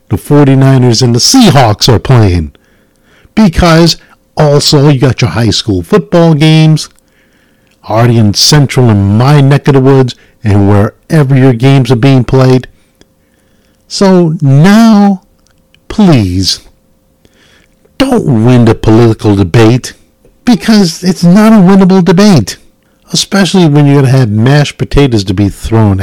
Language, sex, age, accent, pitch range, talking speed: English, male, 50-69, American, 105-150 Hz, 130 wpm